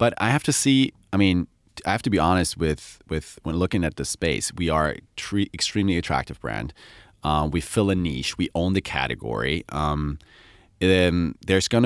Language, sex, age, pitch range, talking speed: English, male, 30-49, 75-95 Hz, 185 wpm